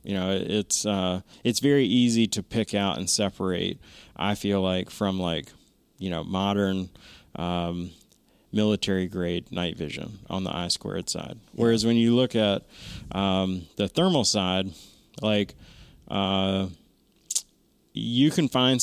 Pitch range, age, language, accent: 95-110 Hz, 30-49, English, American